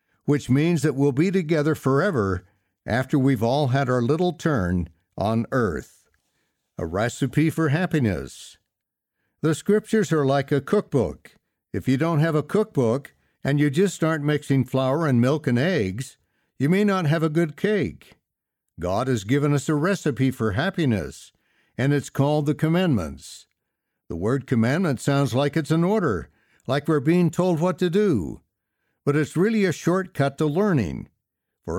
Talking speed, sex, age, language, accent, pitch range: 160 wpm, male, 60-79, English, American, 120-165 Hz